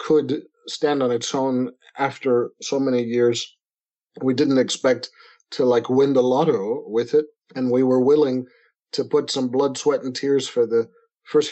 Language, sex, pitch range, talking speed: English, male, 130-185 Hz, 170 wpm